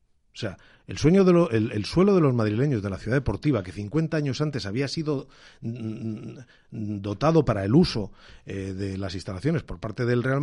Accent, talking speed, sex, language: Spanish, 200 wpm, male, Spanish